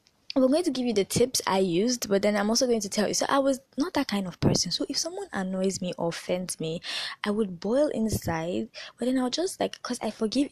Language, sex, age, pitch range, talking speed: English, female, 10-29, 175-230 Hz, 255 wpm